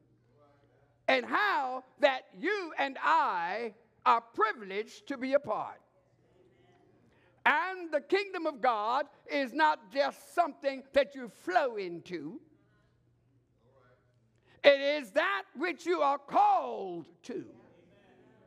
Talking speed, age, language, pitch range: 105 wpm, 60-79, English, 255-370 Hz